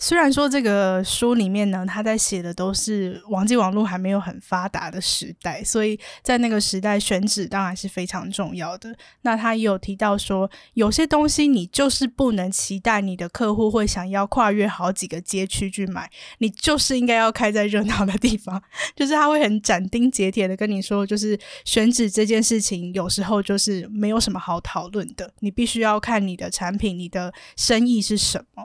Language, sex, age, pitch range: Chinese, female, 10-29, 195-230 Hz